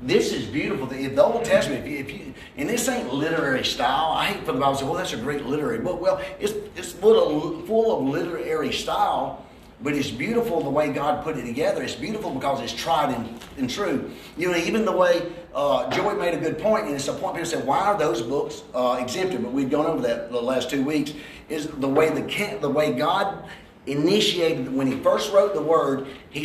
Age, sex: 40-59, male